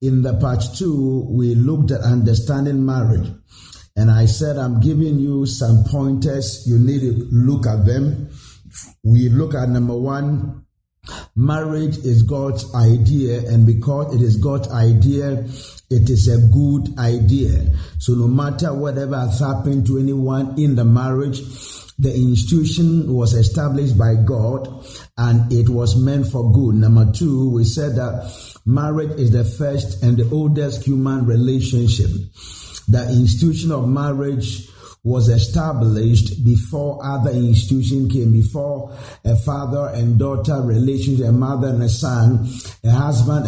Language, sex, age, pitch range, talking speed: English, male, 50-69, 115-140 Hz, 140 wpm